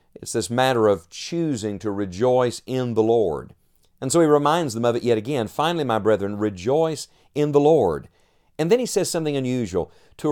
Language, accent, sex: English, American, male